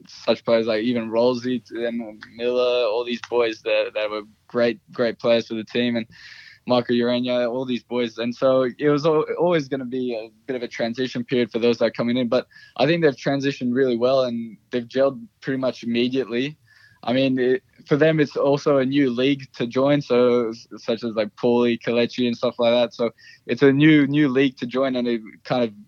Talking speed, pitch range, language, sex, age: 215 wpm, 115-135 Hz, English, male, 10-29